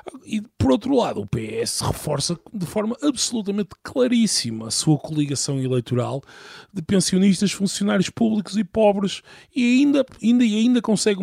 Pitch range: 140-195 Hz